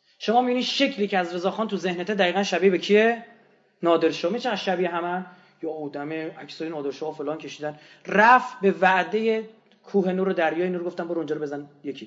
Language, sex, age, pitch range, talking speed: Persian, male, 30-49, 170-210 Hz, 175 wpm